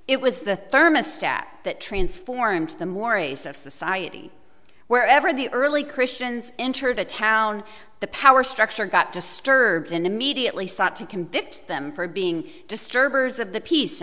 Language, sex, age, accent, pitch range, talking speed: English, female, 40-59, American, 185-250 Hz, 145 wpm